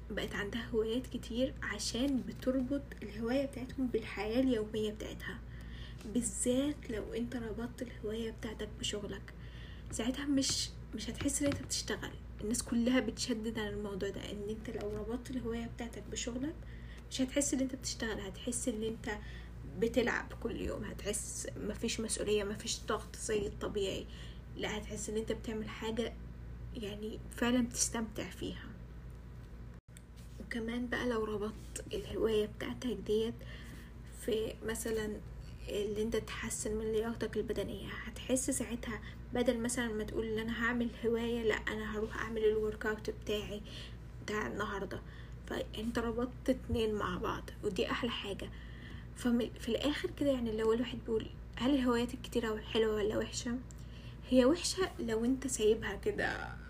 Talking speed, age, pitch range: 135 wpm, 10-29, 215-245 Hz